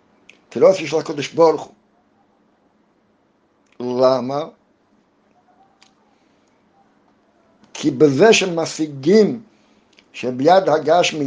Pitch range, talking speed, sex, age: 140-190 Hz, 70 wpm, male, 60-79